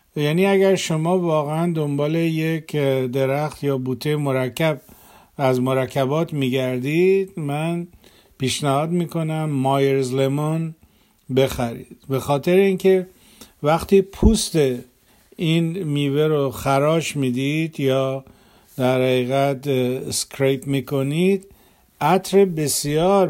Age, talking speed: 50-69, 100 wpm